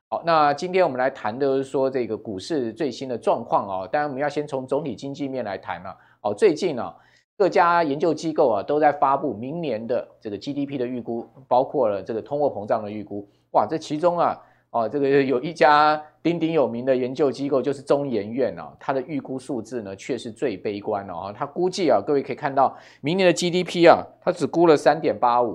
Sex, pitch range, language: male, 125-165 Hz, Chinese